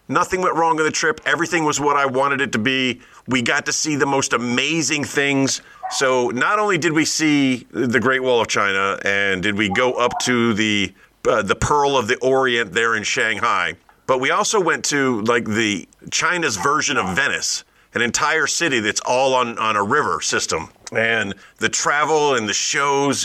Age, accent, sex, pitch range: 40-59, American, male, 115-155 Hz